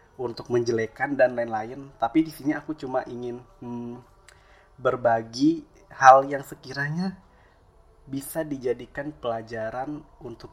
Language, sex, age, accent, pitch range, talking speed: Indonesian, male, 20-39, native, 115-140 Hz, 110 wpm